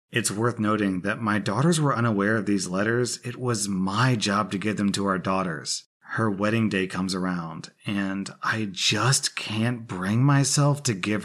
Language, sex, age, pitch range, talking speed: English, male, 30-49, 100-130 Hz, 180 wpm